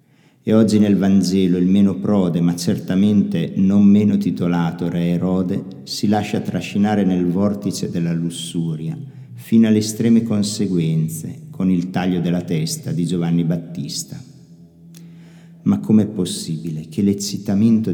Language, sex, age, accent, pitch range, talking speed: Italian, male, 50-69, native, 85-110 Hz, 125 wpm